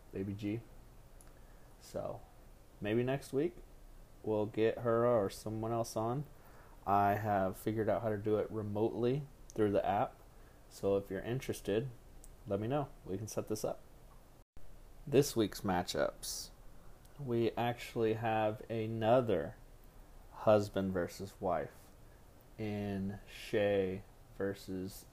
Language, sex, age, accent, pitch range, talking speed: English, male, 30-49, American, 100-115 Hz, 120 wpm